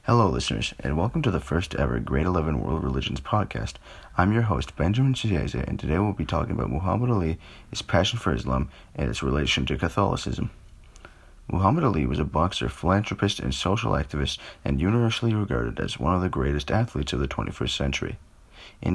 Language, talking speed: English, 180 wpm